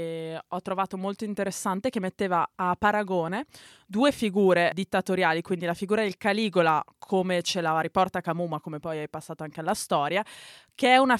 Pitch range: 180-215 Hz